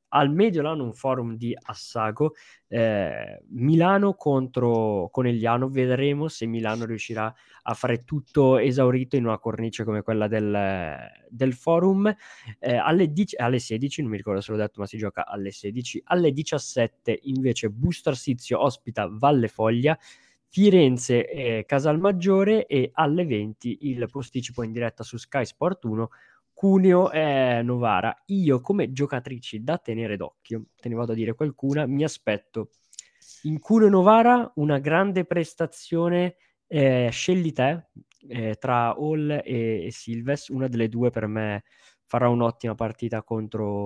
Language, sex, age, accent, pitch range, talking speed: Italian, male, 20-39, native, 115-155 Hz, 145 wpm